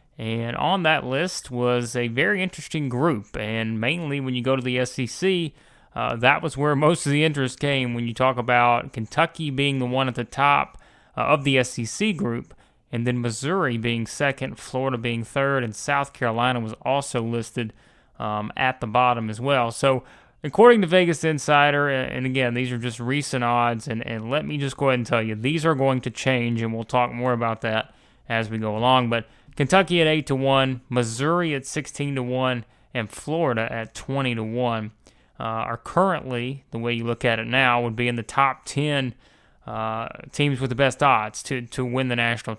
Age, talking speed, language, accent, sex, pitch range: 30-49, 195 wpm, English, American, male, 115-140 Hz